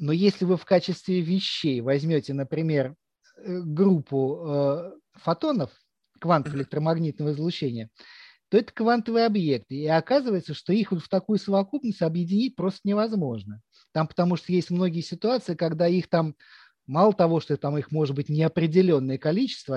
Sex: male